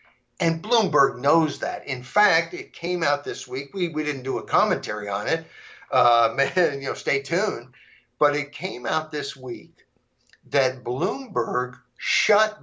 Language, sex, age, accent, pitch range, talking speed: English, male, 60-79, American, 135-190 Hz, 155 wpm